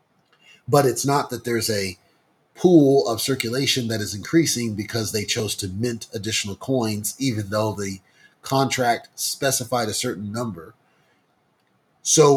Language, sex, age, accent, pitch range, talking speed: English, male, 30-49, American, 115-150 Hz, 135 wpm